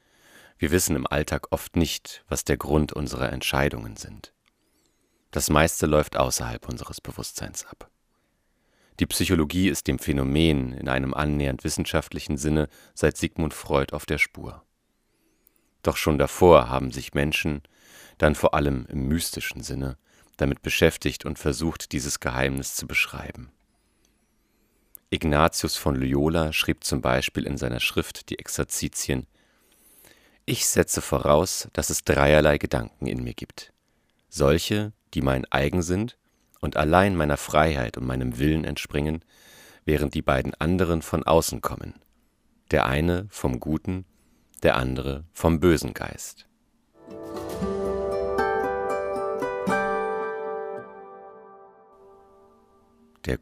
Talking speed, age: 120 wpm, 40-59